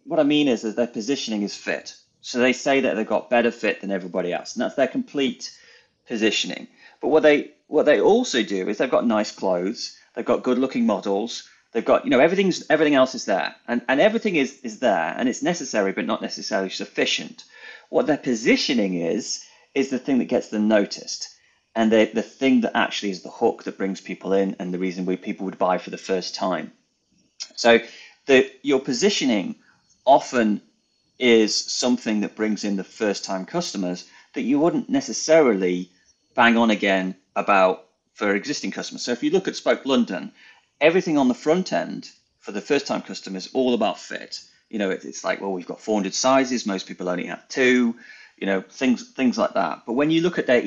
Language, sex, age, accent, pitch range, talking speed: English, male, 30-49, British, 100-155 Hz, 200 wpm